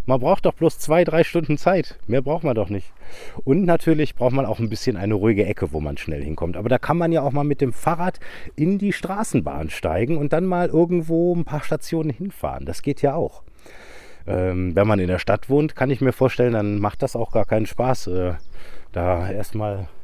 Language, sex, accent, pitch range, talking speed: German, male, German, 90-130 Hz, 220 wpm